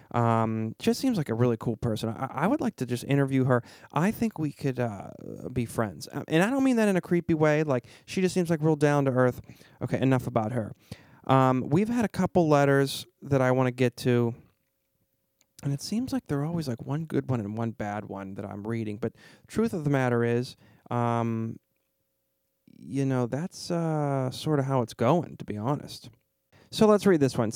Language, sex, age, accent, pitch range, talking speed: English, male, 30-49, American, 120-155 Hz, 215 wpm